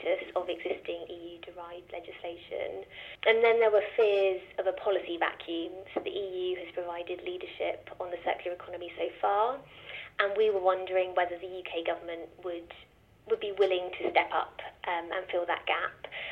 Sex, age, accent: female, 20-39, British